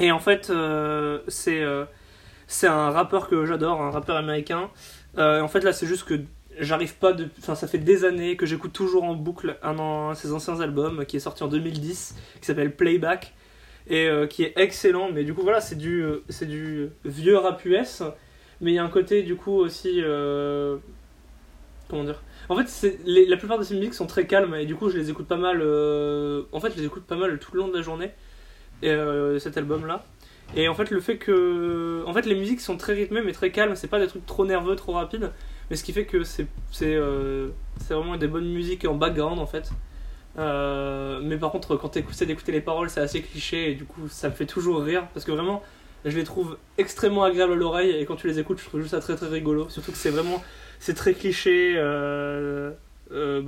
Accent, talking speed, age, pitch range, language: French, 230 wpm, 20-39, 150-185 Hz, French